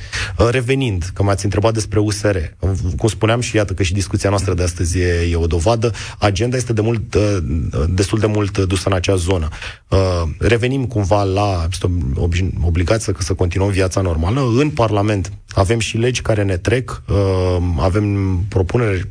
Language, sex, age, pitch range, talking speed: Romanian, male, 30-49, 90-115 Hz, 160 wpm